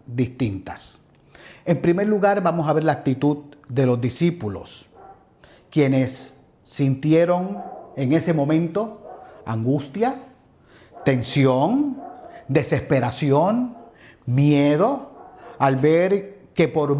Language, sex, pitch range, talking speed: Spanish, male, 135-185 Hz, 90 wpm